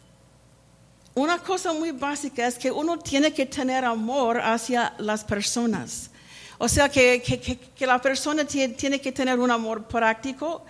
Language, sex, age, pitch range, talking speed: English, female, 50-69, 230-270 Hz, 150 wpm